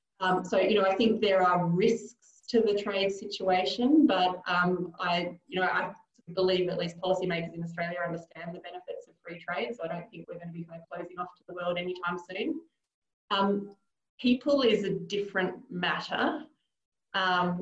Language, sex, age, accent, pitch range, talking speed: English, female, 20-39, Australian, 170-195 Hz, 180 wpm